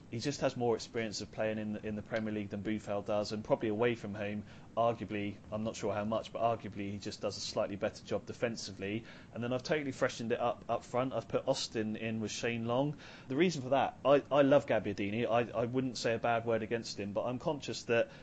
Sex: male